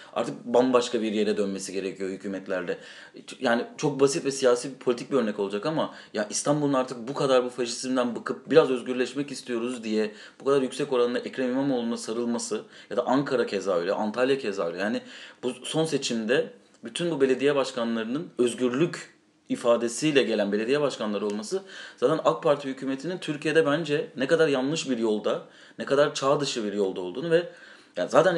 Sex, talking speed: male, 165 wpm